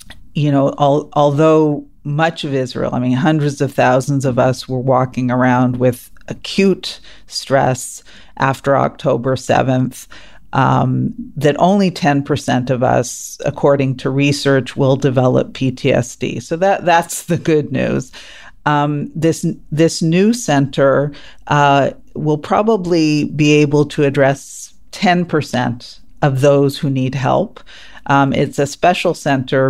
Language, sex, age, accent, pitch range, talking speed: English, female, 50-69, American, 130-150 Hz, 125 wpm